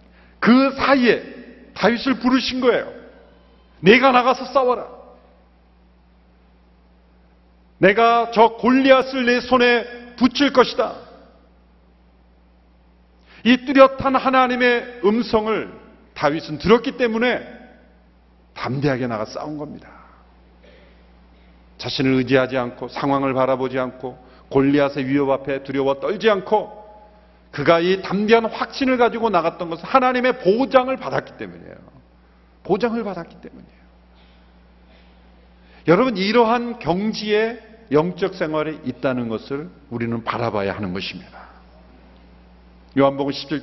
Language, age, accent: Korean, 40-59, native